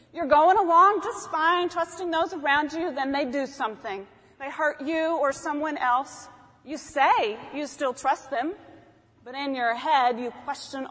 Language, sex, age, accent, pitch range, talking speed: English, female, 30-49, American, 250-315 Hz, 170 wpm